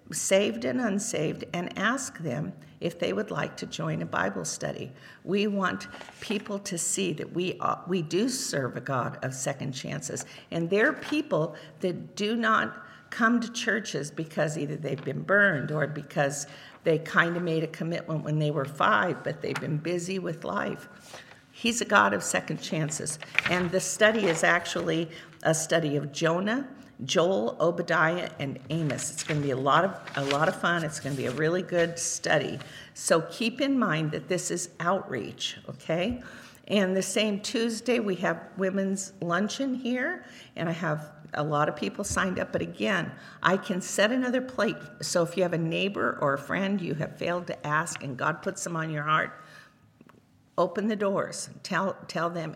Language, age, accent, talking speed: English, 50-69, American, 185 wpm